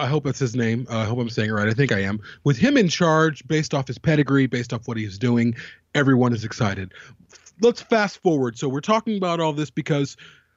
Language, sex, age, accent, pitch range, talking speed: English, male, 30-49, American, 125-155 Hz, 240 wpm